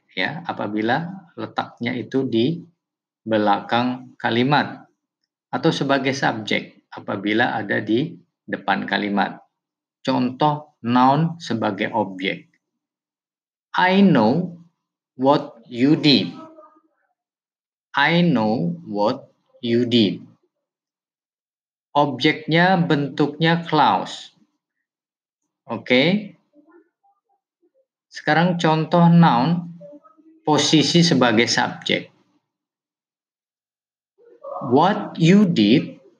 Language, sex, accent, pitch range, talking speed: English, male, Indonesian, 125-175 Hz, 70 wpm